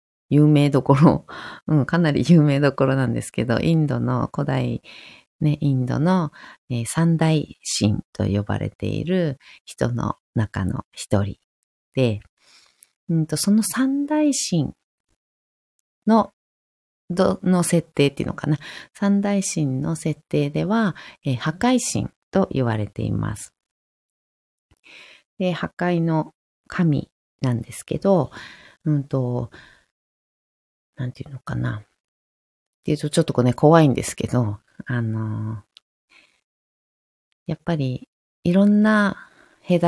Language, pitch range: Japanese, 120-170 Hz